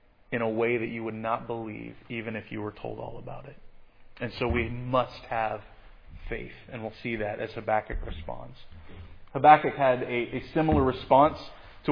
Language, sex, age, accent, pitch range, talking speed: English, male, 30-49, American, 110-140 Hz, 180 wpm